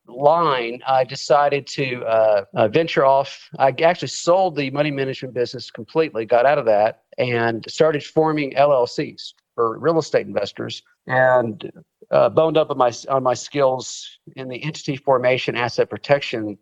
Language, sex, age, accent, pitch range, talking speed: English, male, 50-69, American, 120-150 Hz, 155 wpm